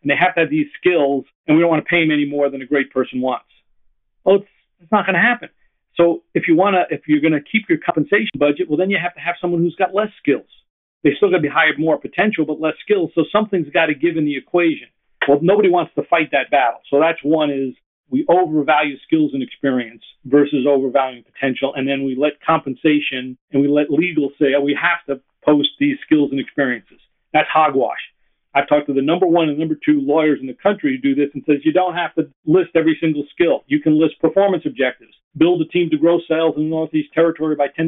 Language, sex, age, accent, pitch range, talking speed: English, male, 50-69, American, 145-175 Hz, 245 wpm